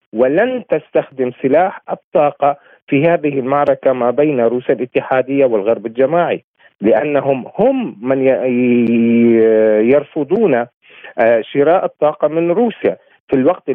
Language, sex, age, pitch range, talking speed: Arabic, male, 40-59, 120-170 Hz, 100 wpm